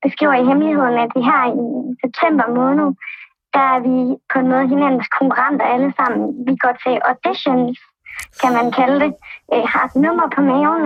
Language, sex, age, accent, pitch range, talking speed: Danish, male, 20-39, native, 255-300 Hz, 190 wpm